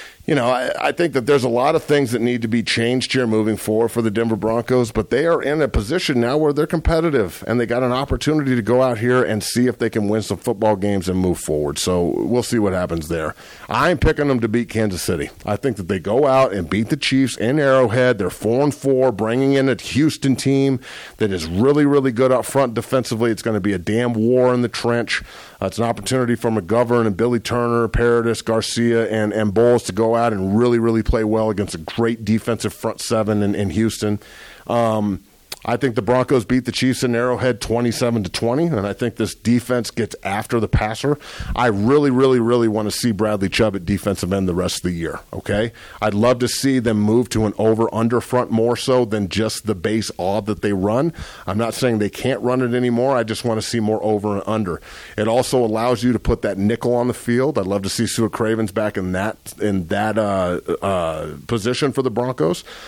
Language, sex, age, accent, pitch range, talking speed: English, male, 50-69, American, 110-125 Hz, 230 wpm